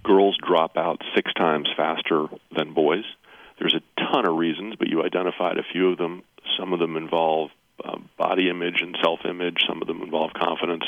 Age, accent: 40-59, American